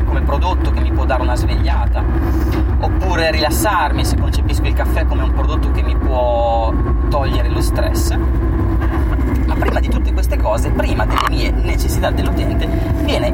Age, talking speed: 30-49, 155 wpm